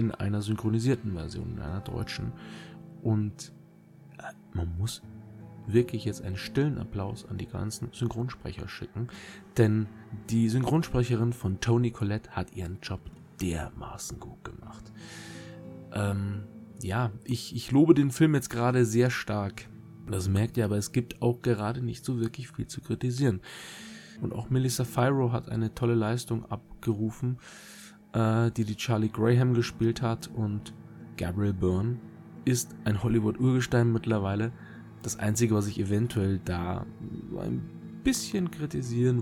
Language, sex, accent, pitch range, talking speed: German, male, German, 105-120 Hz, 135 wpm